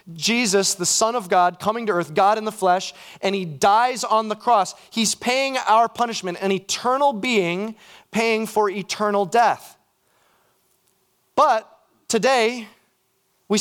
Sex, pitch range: male, 215-280 Hz